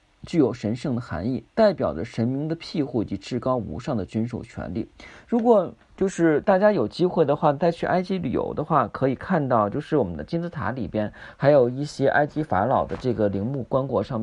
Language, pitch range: Chinese, 110-165 Hz